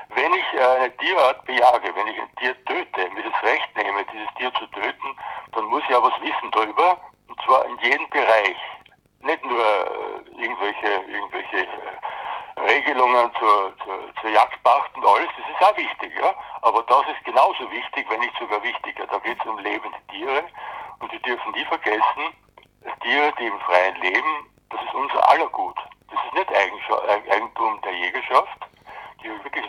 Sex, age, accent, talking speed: male, 60-79, German, 170 wpm